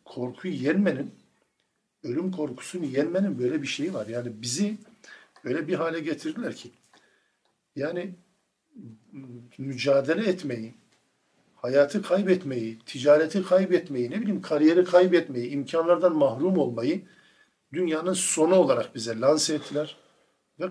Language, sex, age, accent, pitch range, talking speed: Turkish, male, 50-69, native, 125-180 Hz, 105 wpm